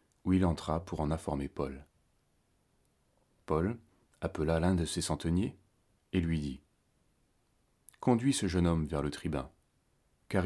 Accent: French